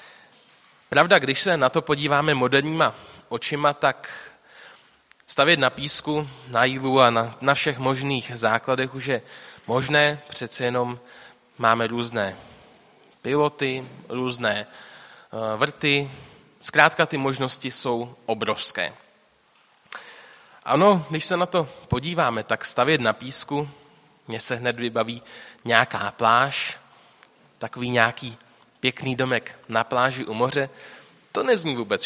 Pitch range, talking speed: 125-155 Hz, 115 wpm